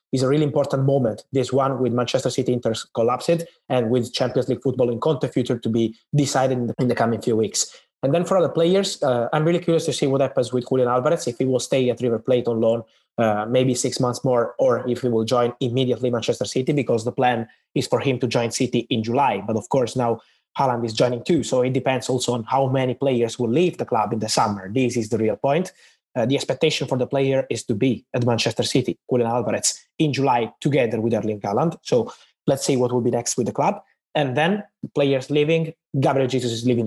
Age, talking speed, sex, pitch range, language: 20-39, 235 wpm, male, 120-140 Hz, English